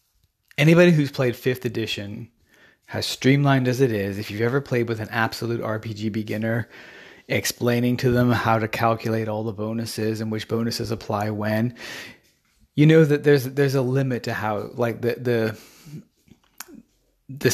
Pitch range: 105-125 Hz